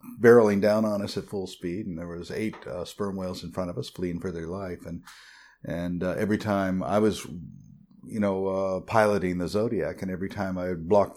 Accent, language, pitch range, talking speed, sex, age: American, English, 90-100 Hz, 215 wpm, male, 50-69